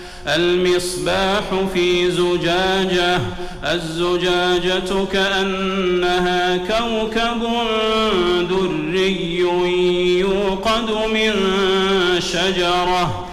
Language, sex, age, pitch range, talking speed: Arabic, male, 40-59, 175-195 Hz, 45 wpm